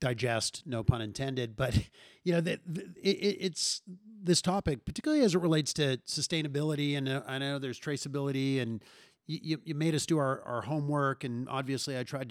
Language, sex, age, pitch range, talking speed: English, male, 50-69, 125-160 Hz, 170 wpm